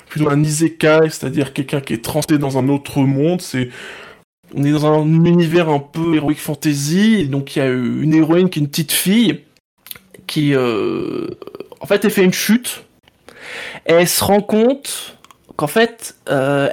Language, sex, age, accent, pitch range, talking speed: French, male, 20-39, French, 155-210 Hz, 175 wpm